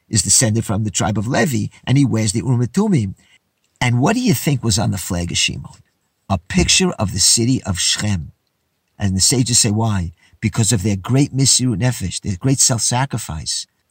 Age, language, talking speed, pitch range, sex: 50-69, English, 190 wpm, 105-150 Hz, male